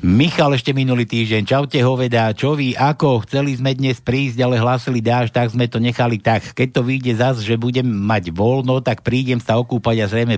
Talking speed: 210 wpm